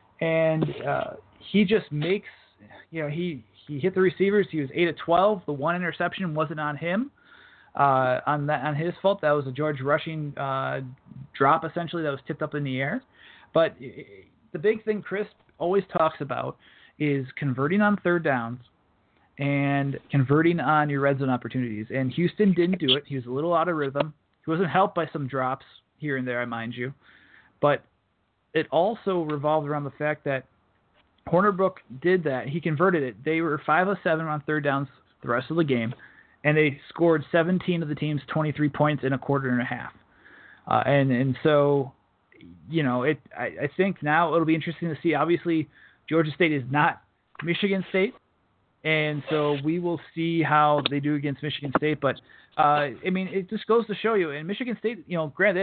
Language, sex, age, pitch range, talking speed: English, male, 20-39, 140-175 Hz, 195 wpm